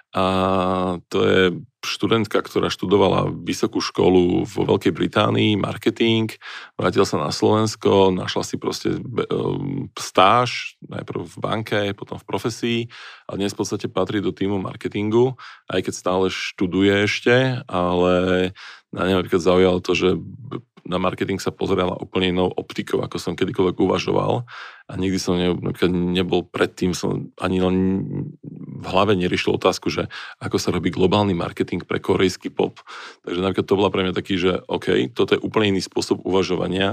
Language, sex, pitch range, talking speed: Slovak, male, 90-105 Hz, 150 wpm